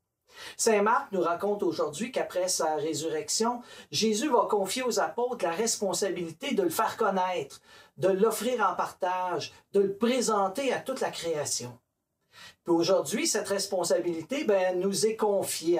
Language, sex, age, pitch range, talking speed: French, male, 40-59, 170-230 Hz, 135 wpm